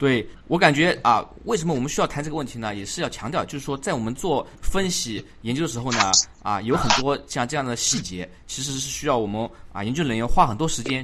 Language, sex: Chinese, male